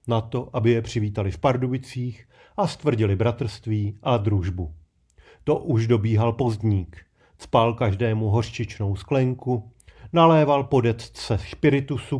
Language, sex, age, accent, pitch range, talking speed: Czech, male, 40-59, native, 110-130 Hz, 115 wpm